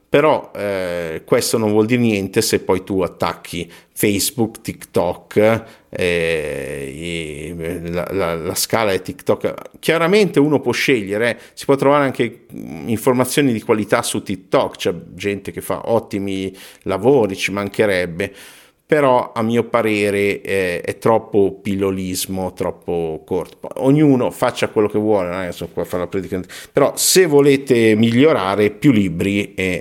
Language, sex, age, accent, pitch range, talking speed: Italian, male, 50-69, native, 95-125 Hz, 135 wpm